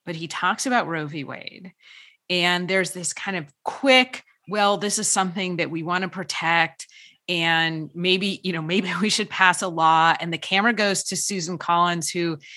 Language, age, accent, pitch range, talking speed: English, 30-49, American, 160-200 Hz, 190 wpm